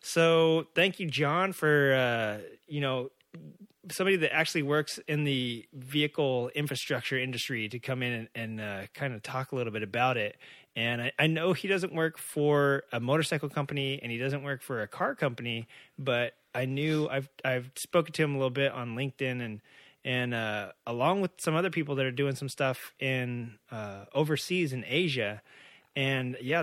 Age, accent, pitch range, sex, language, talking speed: 30-49, American, 120-150 Hz, male, English, 185 wpm